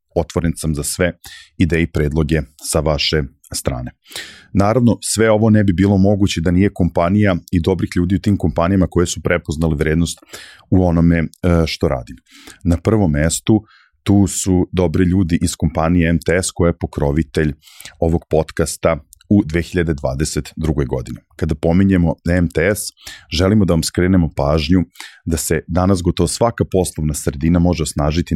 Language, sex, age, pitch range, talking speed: English, male, 40-59, 80-95 Hz, 145 wpm